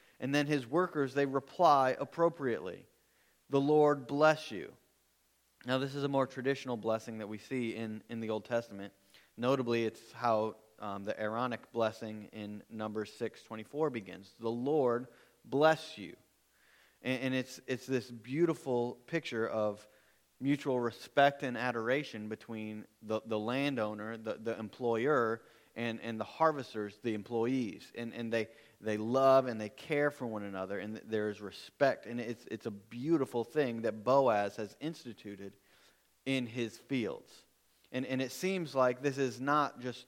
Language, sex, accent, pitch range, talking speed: English, male, American, 110-135 Hz, 155 wpm